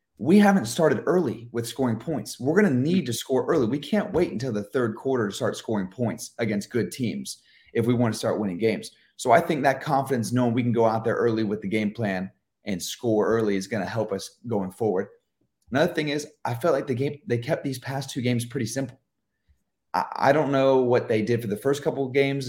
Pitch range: 115-140 Hz